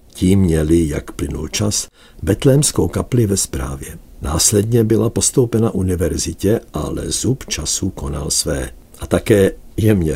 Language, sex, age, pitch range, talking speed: Czech, male, 60-79, 80-110 Hz, 125 wpm